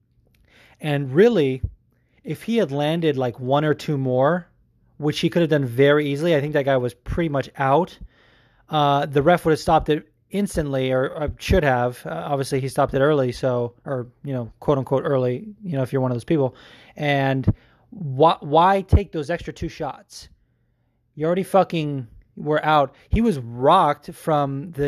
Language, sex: English, male